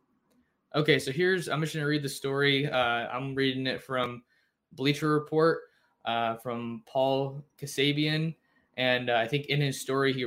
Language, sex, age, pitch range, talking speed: English, male, 20-39, 120-145 Hz, 170 wpm